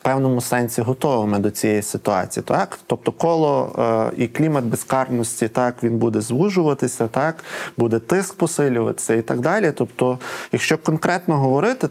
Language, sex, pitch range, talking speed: Ukrainian, male, 120-140 Hz, 145 wpm